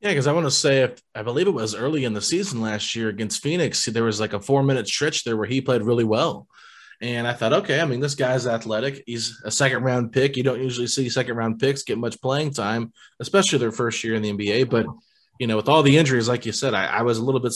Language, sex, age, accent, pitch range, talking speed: English, male, 20-39, American, 115-135 Hz, 260 wpm